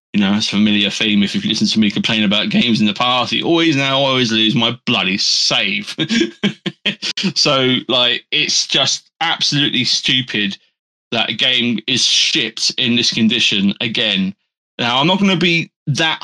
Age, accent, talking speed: 20-39, British, 175 wpm